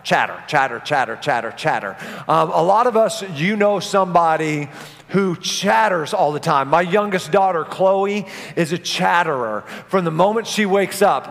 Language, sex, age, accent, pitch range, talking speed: English, male, 40-59, American, 155-205 Hz, 160 wpm